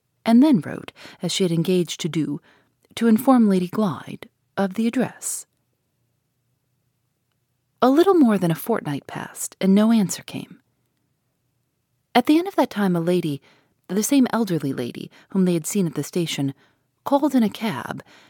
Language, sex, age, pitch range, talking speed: English, female, 40-59, 140-215 Hz, 165 wpm